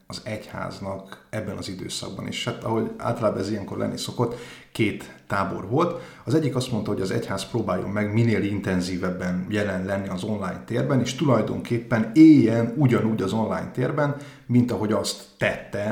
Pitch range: 95-125 Hz